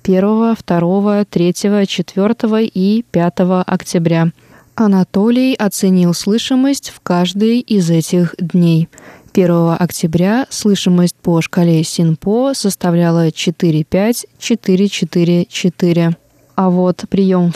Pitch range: 170-195 Hz